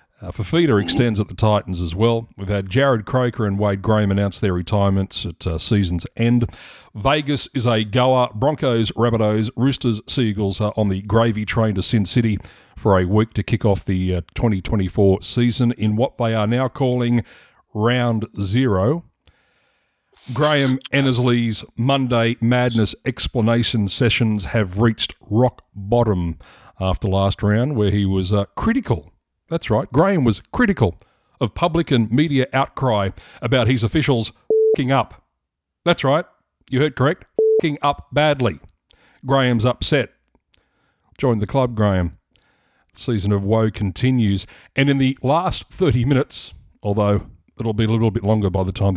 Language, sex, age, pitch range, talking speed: English, male, 40-59, 100-130 Hz, 150 wpm